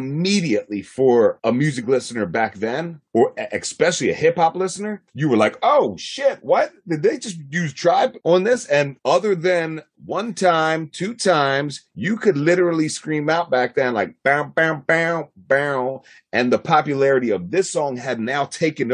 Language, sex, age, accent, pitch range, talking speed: English, male, 30-49, American, 100-160 Hz, 170 wpm